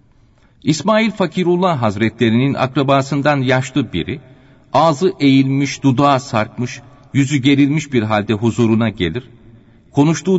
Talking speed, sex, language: 100 wpm, male, Turkish